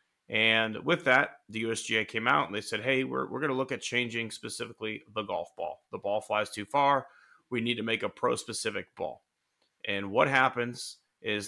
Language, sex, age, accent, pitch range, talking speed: English, male, 30-49, American, 105-135 Hz, 200 wpm